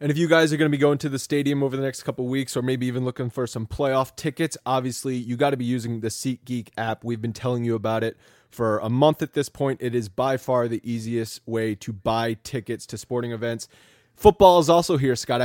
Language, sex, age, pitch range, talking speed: English, male, 20-39, 115-140 Hz, 250 wpm